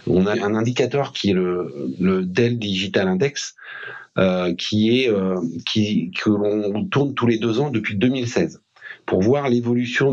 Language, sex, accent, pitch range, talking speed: French, male, French, 105-135 Hz, 165 wpm